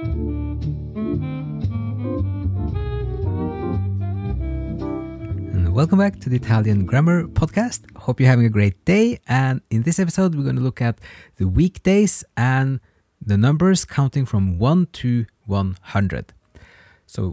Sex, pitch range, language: male, 90-130 Hz, English